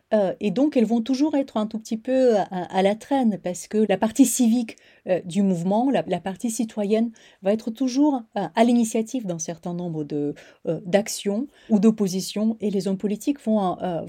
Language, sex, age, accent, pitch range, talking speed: French, female, 30-49, French, 185-230 Hz, 195 wpm